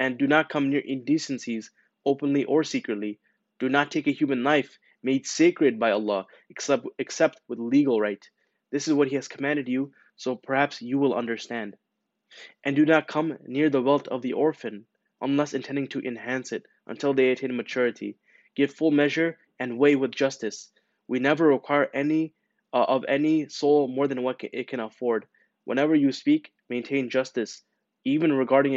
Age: 20-39